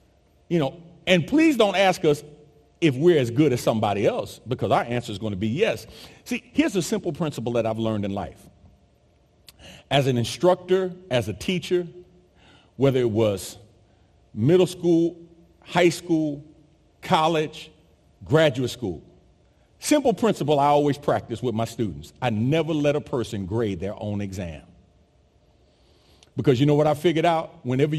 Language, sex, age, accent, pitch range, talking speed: English, male, 40-59, American, 115-175 Hz, 155 wpm